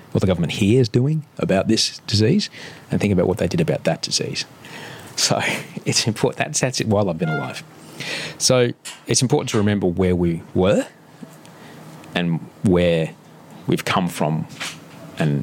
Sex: male